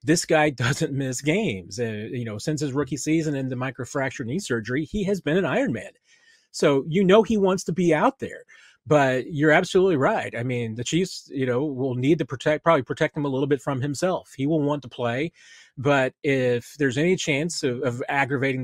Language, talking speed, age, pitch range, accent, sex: English, 210 wpm, 30-49, 125-155 Hz, American, male